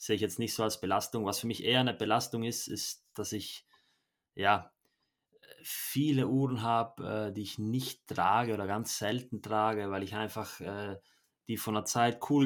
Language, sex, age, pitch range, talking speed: German, male, 20-39, 100-115 Hz, 180 wpm